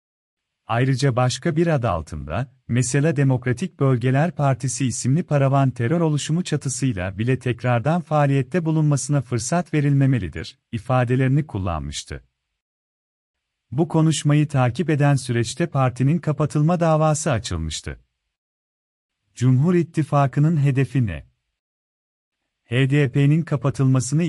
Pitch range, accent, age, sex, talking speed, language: 120-150 Hz, native, 40-59, male, 90 wpm, Turkish